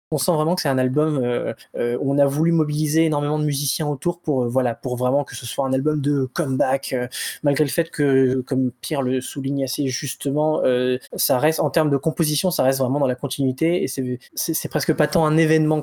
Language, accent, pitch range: French, French, 135-160 Hz